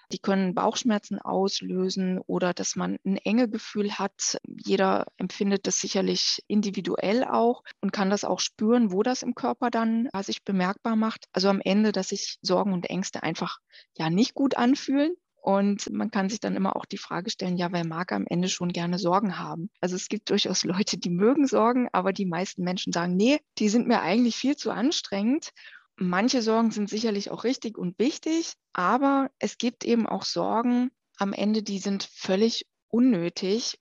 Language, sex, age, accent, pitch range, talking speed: German, female, 20-39, German, 190-235 Hz, 185 wpm